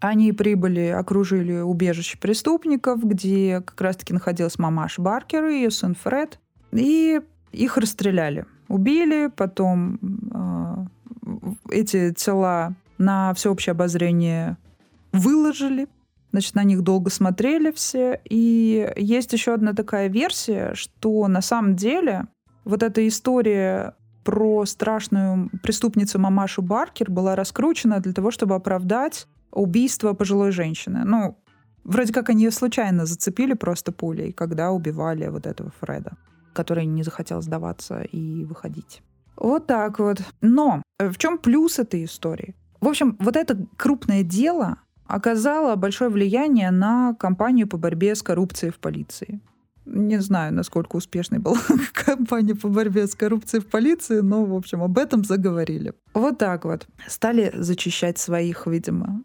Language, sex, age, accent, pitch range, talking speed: Russian, female, 20-39, native, 180-230 Hz, 130 wpm